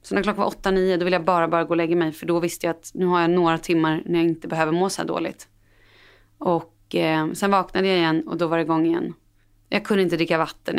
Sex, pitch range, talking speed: female, 155-195 Hz, 275 wpm